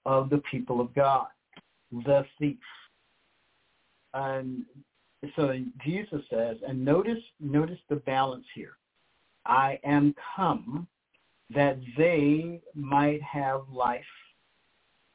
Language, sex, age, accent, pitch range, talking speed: English, male, 50-69, American, 130-150 Hz, 100 wpm